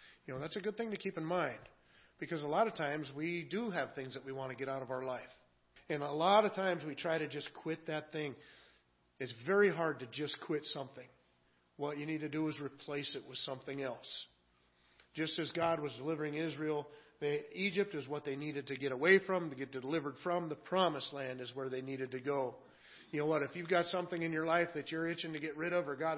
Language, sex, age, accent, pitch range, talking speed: English, male, 40-59, American, 135-170 Hz, 240 wpm